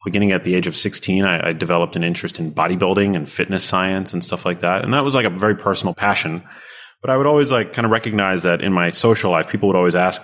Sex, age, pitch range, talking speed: male, 30-49, 85-105 Hz, 265 wpm